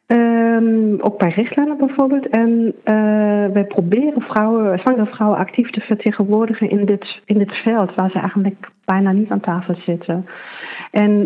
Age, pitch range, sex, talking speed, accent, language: 40-59, 195-230 Hz, female, 155 wpm, Dutch, Dutch